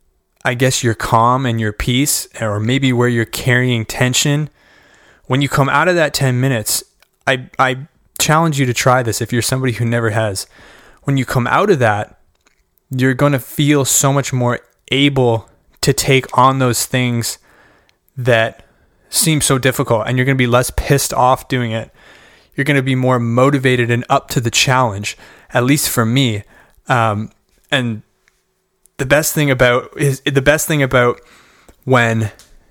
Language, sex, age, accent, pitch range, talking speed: English, male, 20-39, American, 120-140 Hz, 170 wpm